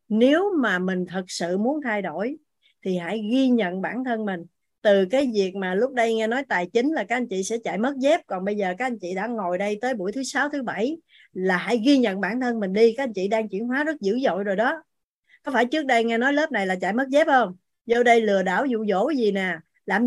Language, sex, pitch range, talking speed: Vietnamese, female, 190-245 Hz, 265 wpm